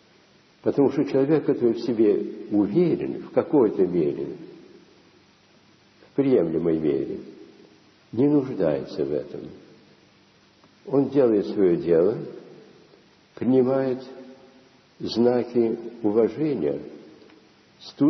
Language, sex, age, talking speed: Russian, male, 60-79, 85 wpm